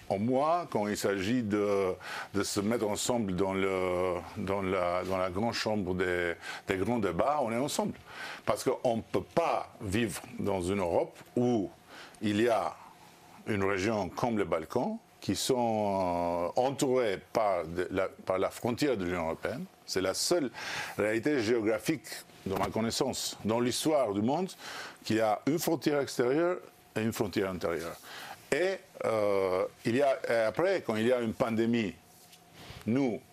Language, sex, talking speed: French, male, 160 wpm